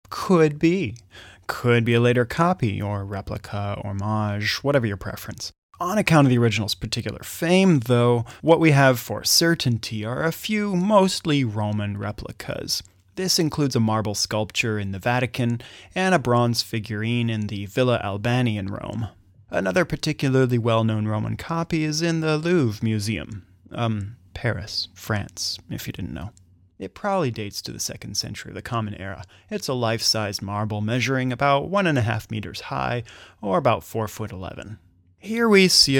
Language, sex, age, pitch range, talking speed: English, male, 20-39, 105-150 Hz, 165 wpm